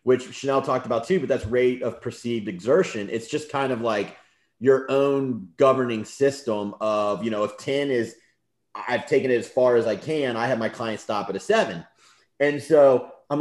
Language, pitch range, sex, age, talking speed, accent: English, 105-135 Hz, male, 30-49, 200 wpm, American